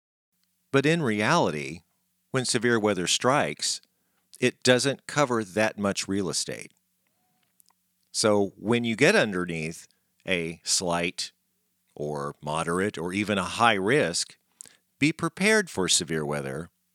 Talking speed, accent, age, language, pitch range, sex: 115 wpm, American, 50-69, English, 90-125 Hz, male